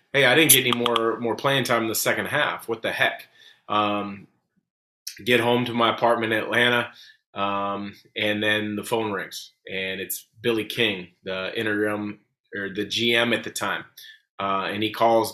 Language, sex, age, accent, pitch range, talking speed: English, male, 30-49, American, 105-120 Hz, 180 wpm